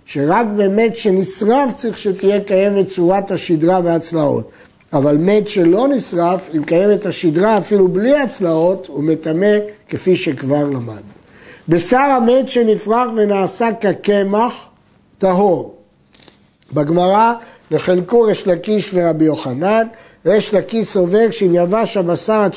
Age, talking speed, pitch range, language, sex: 60-79, 110 wpm, 165-220 Hz, Hebrew, male